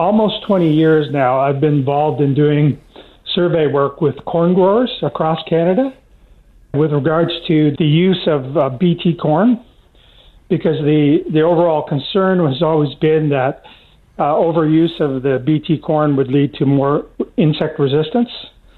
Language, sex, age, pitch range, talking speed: English, male, 50-69, 150-185 Hz, 145 wpm